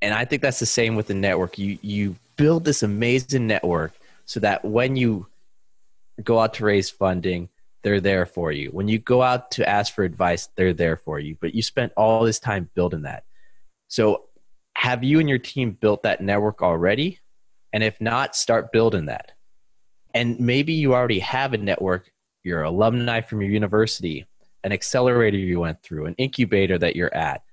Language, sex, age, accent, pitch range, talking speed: English, male, 20-39, American, 100-125 Hz, 185 wpm